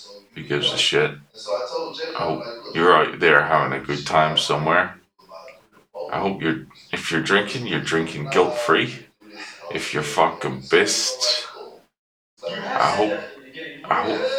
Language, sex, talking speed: English, male, 125 wpm